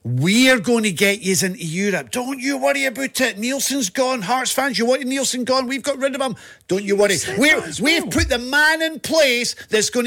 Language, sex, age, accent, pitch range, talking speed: English, male, 50-69, British, 175-250 Hz, 220 wpm